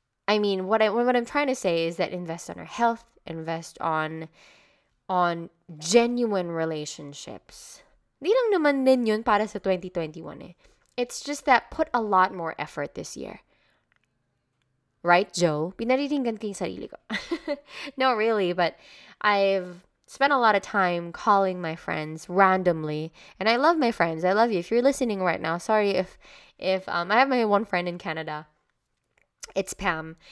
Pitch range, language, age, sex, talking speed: 170-235 Hz, Filipino, 20-39, female, 140 wpm